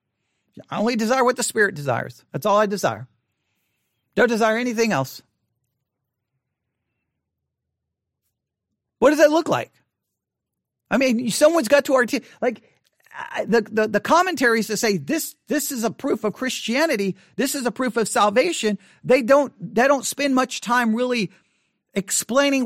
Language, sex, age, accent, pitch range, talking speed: English, male, 40-59, American, 185-265 Hz, 150 wpm